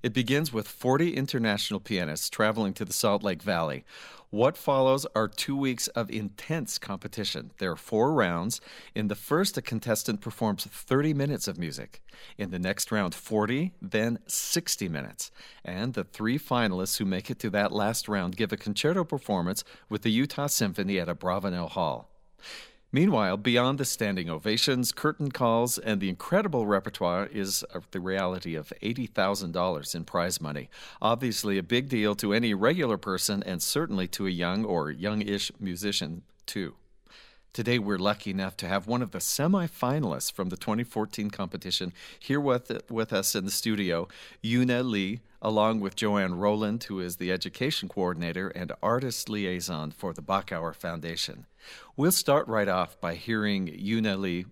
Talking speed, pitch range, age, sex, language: 165 wpm, 95-120 Hz, 50-69, male, English